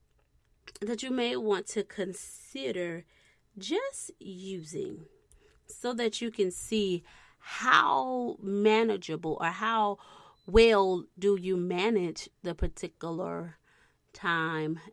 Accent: American